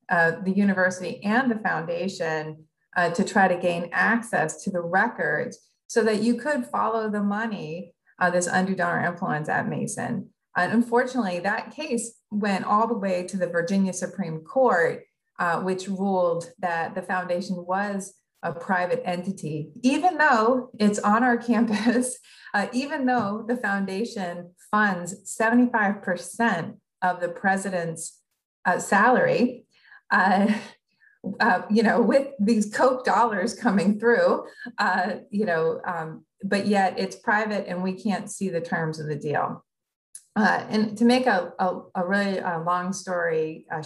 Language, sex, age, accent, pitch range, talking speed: English, female, 30-49, American, 180-225 Hz, 150 wpm